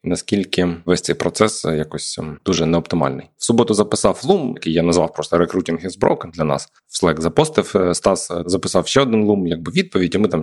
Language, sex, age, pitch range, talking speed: Ukrainian, male, 20-39, 90-110 Hz, 190 wpm